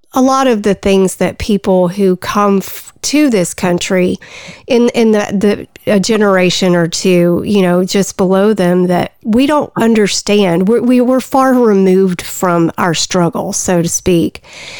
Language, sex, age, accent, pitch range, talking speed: English, female, 40-59, American, 185-225 Hz, 165 wpm